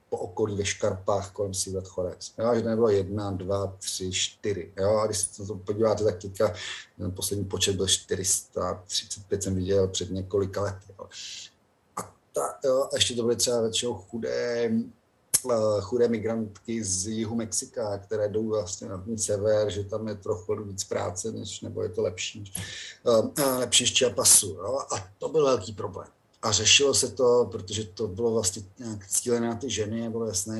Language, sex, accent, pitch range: Czech, male, native, 100-120 Hz